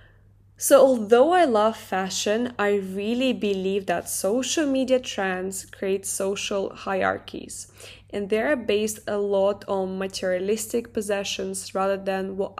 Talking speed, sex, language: 130 wpm, female, English